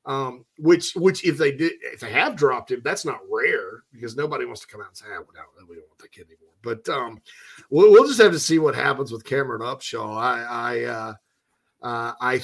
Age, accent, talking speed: 40-59, American, 240 wpm